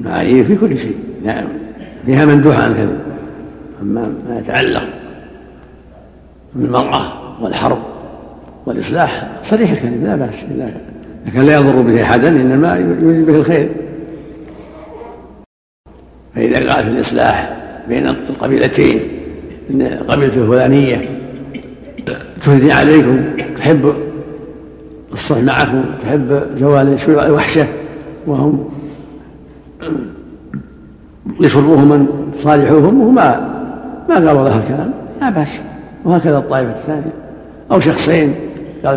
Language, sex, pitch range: Arabic, male, 130-155 Hz